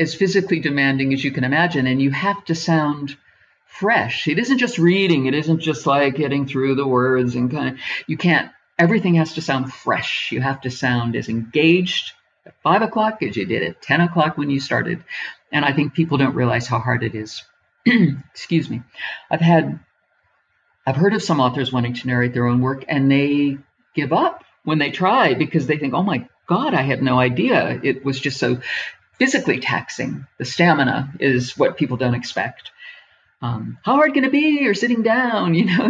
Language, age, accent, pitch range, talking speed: English, 50-69, American, 130-175 Hz, 200 wpm